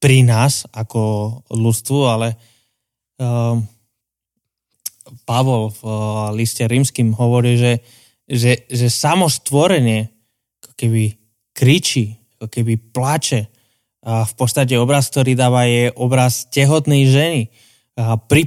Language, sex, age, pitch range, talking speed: Slovak, male, 20-39, 115-135 Hz, 105 wpm